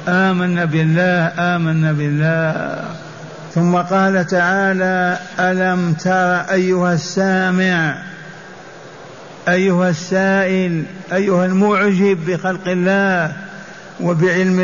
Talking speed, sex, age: 75 wpm, male, 60-79